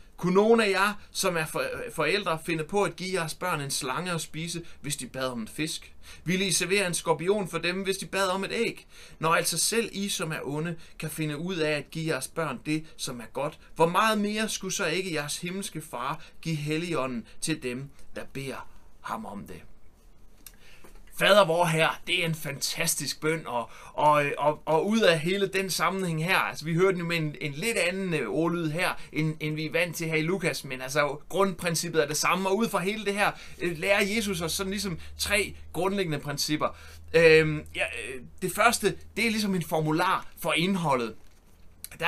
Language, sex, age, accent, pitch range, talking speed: Danish, male, 30-49, native, 150-185 Hz, 205 wpm